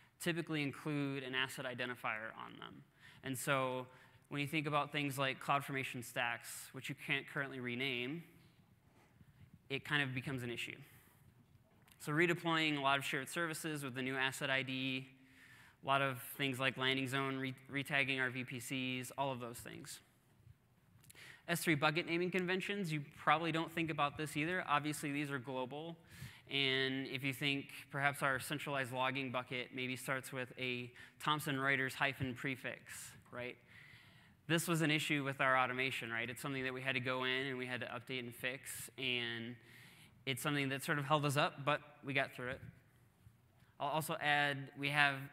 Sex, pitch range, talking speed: male, 130-150 Hz, 170 wpm